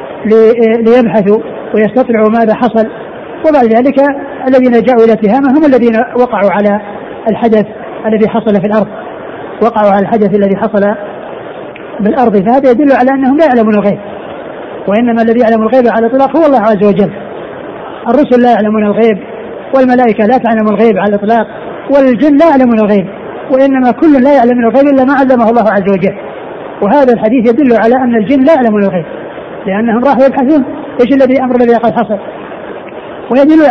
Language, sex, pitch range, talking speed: Arabic, female, 215-255 Hz, 150 wpm